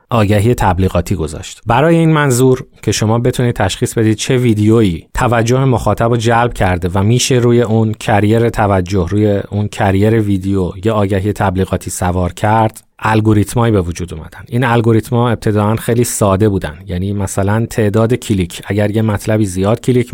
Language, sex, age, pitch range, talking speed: Persian, male, 30-49, 100-120 Hz, 155 wpm